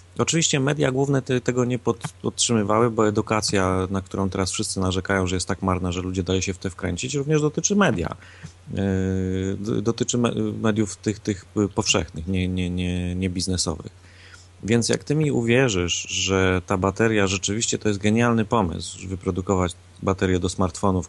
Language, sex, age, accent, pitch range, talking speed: Polish, male, 30-49, native, 95-110 Hz, 155 wpm